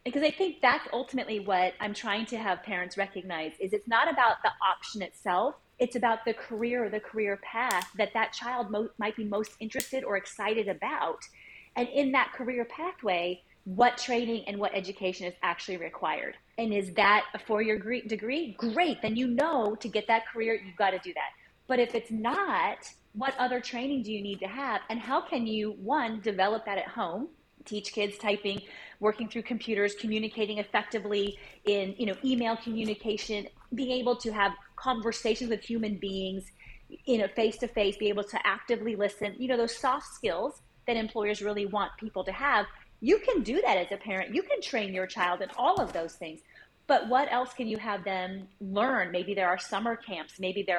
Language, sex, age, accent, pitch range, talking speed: English, female, 30-49, American, 200-245 Hz, 195 wpm